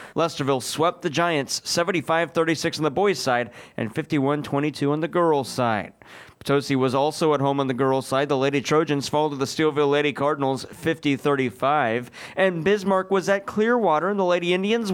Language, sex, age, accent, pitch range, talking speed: English, male, 30-49, American, 140-180 Hz, 170 wpm